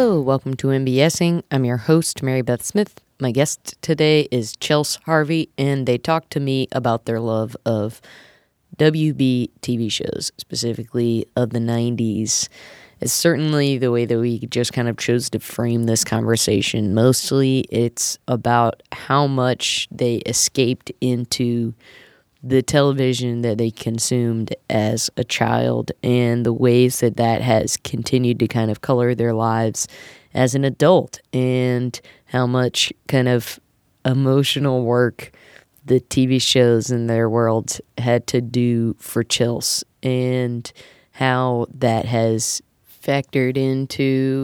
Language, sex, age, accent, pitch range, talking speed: English, female, 20-39, American, 115-135 Hz, 135 wpm